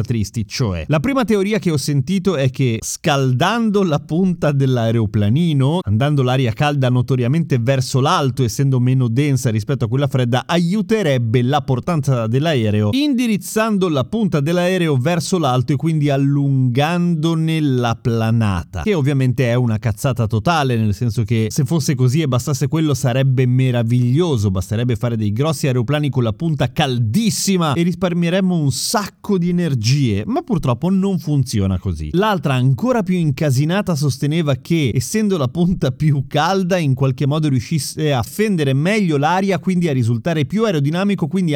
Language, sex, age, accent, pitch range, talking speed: Italian, male, 30-49, native, 125-175 Hz, 150 wpm